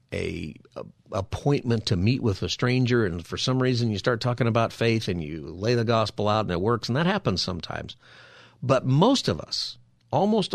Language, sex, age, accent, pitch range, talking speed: English, male, 50-69, American, 100-125 Hz, 200 wpm